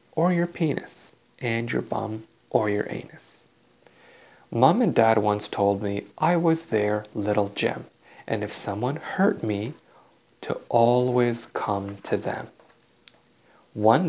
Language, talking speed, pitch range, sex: English, 130 wpm, 105-140 Hz, male